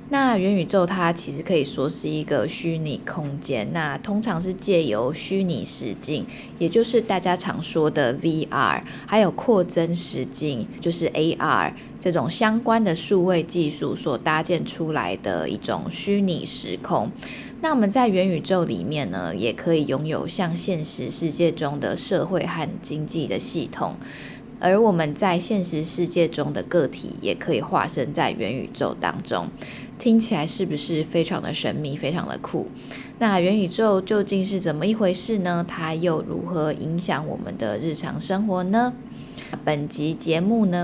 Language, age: Chinese, 20-39